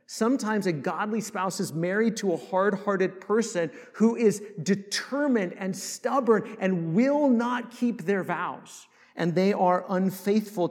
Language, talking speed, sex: English, 140 wpm, male